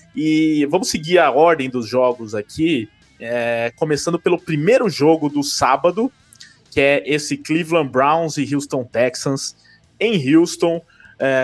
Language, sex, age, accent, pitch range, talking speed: Portuguese, male, 20-39, Brazilian, 130-165 Hz, 135 wpm